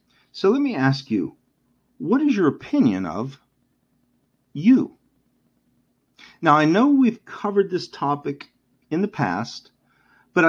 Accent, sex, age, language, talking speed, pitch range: American, male, 50-69, English, 125 wpm, 115-170 Hz